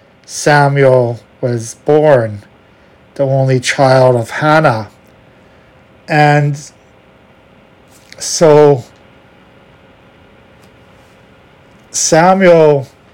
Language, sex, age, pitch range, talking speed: English, male, 40-59, 130-150 Hz, 50 wpm